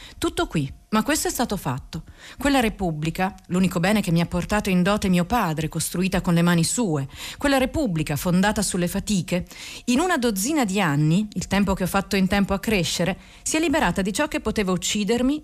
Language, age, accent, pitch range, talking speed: Italian, 40-59, native, 170-230 Hz, 200 wpm